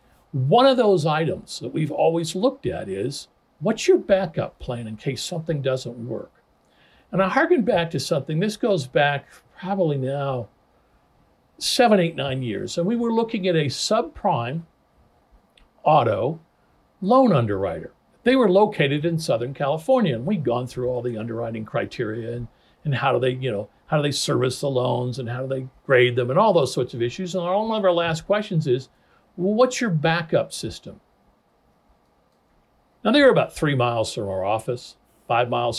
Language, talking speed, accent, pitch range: English, 175 wpm, American, 130-190 Hz